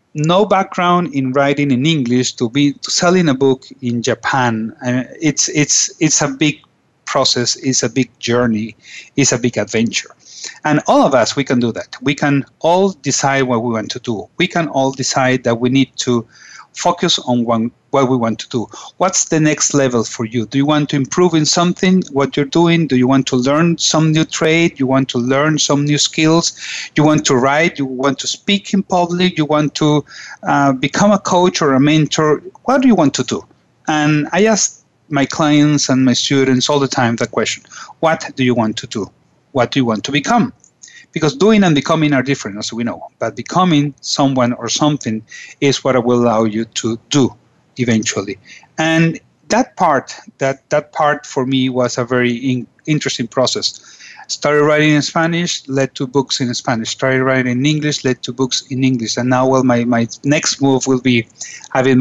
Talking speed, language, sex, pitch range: 205 wpm, English, male, 125-155 Hz